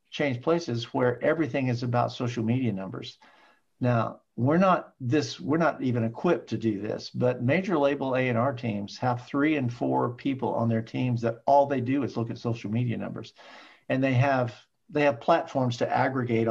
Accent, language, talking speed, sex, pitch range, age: American, English, 185 wpm, male, 115-140 Hz, 50-69